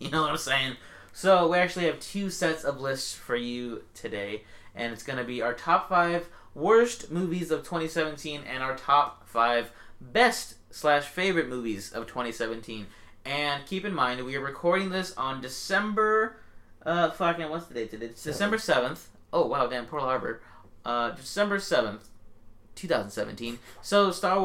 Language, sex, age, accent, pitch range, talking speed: English, male, 20-39, American, 115-160 Hz, 155 wpm